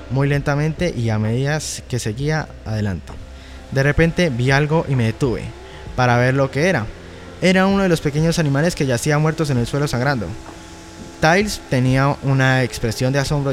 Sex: male